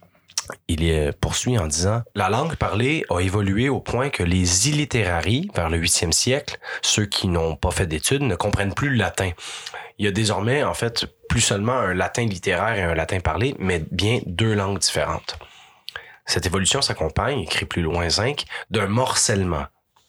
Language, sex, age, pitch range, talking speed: French, male, 30-49, 85-115 Hz, 175 wpm